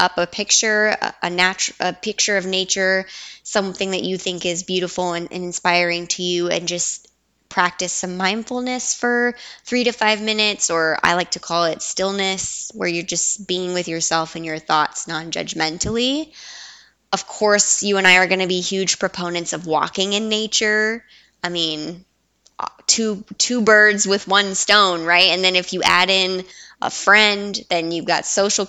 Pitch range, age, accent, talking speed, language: 170-205 Hz, 10-29, American, 175 wpm, English